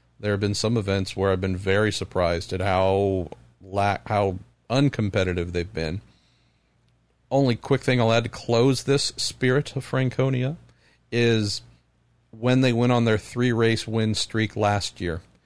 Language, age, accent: English, 40-59, American